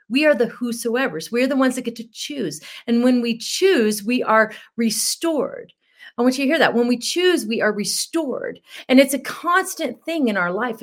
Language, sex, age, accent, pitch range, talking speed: English, female, 40-59, American, 215-275 Hz, 210 wpm